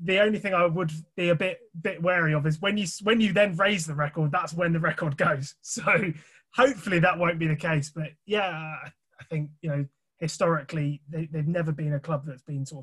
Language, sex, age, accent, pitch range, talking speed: English, male, 20-39, British, 145-170 Hz, 225 wpm